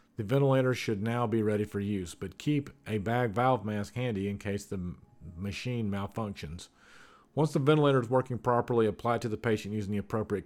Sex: male